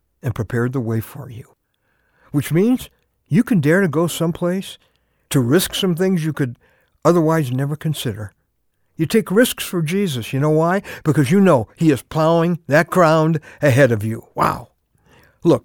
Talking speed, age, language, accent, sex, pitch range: 170 wpm, 60-79, English, American, male, 130-210 Hz